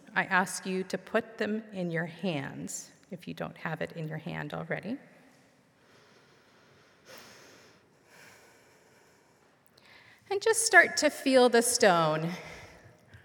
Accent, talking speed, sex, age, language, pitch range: American, 115 wpm, female, 40-59, English, 170-220 Hz